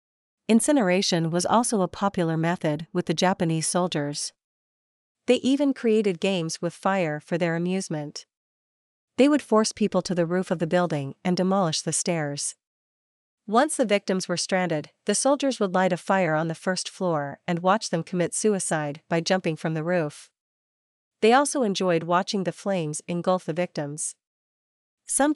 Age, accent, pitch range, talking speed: 40-59, American, 165-205 Hz, 160 wpm